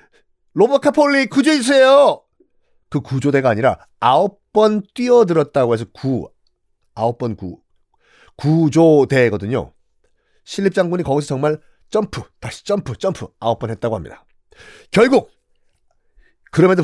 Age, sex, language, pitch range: 40-59, male, Korean, 115-190 Hz